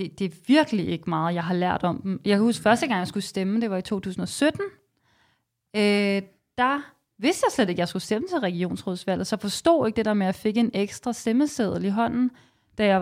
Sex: female